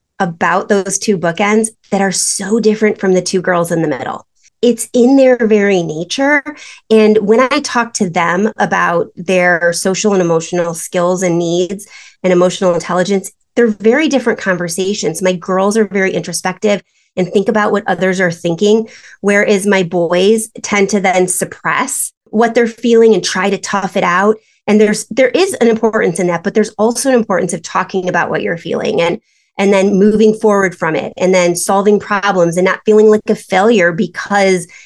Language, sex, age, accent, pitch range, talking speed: English, female, 30-49, American, 180-220 Hz, 180 wpm